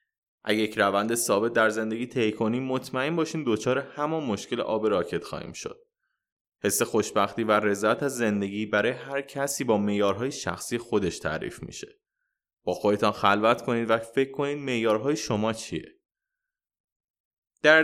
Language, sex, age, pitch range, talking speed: Persian, male, 20-39, 110-165 Hz, 145 wpm